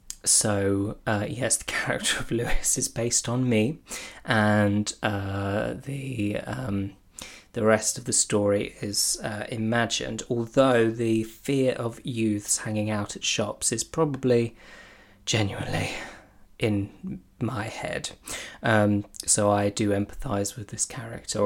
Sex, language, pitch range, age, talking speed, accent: male, English, 105-125 Hz, 20-39, 130 wpm, British